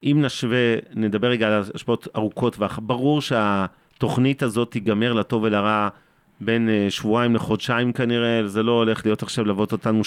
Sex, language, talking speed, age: male, Hebrew, 150 wpm, 40-59